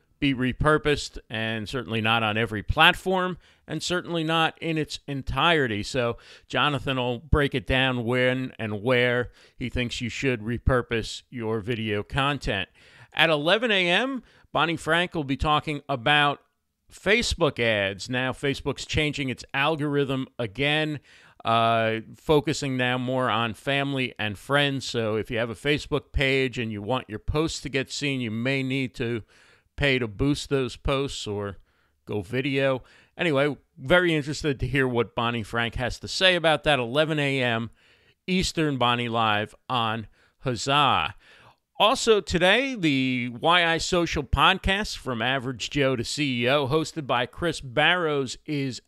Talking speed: 145 wpm